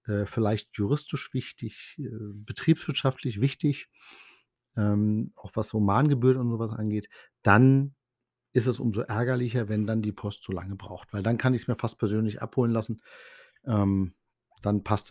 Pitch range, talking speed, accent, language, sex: 110-130 Hz, 140 wpm, German, German, male